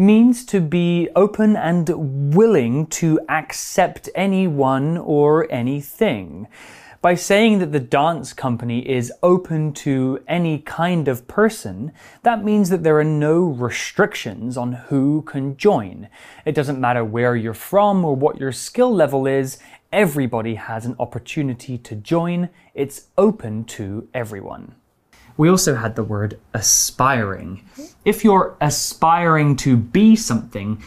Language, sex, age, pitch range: Chinese, male, 20-39, 125-180 Hz